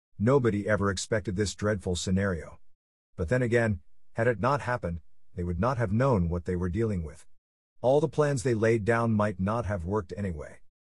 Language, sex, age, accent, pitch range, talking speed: English, male, 50-69, American, 90-120 Hz, 190 wpm